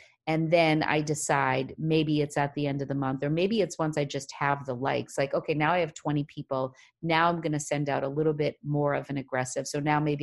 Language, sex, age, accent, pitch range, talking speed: English, female, 30-49, American, 140-160 Hz, 260 wpm